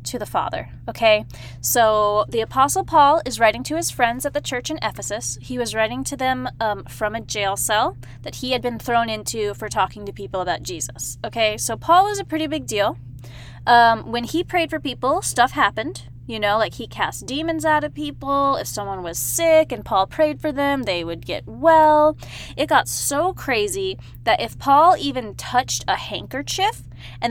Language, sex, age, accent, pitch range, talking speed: English, female, 20-39, American, 195-285 Hz, 195 wpm